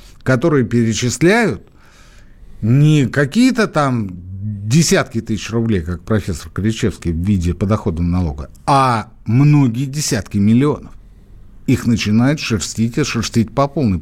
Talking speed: 110 wpm